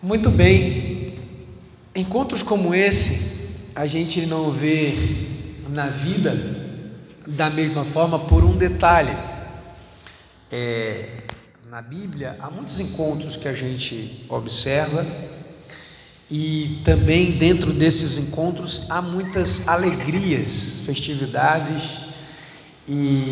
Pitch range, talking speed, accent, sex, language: 125-160 Hz, 95 wpm, Brazilian, male, English